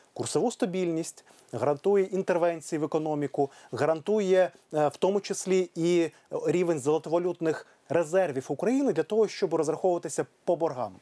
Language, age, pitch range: Ukrainian, 30-49, 140-180 Hz